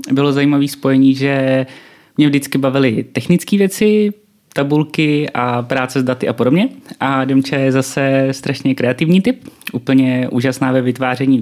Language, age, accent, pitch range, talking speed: Czech, 20-39, native, 135-170 Hz, 140 wpm